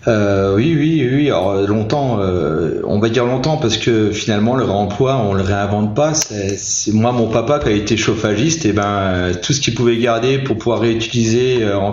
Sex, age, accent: male, 30-49, French